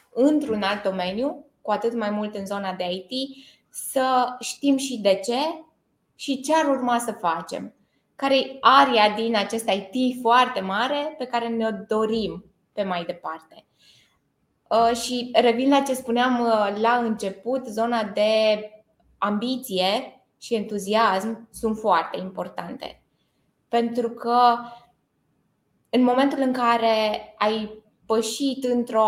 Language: Romanian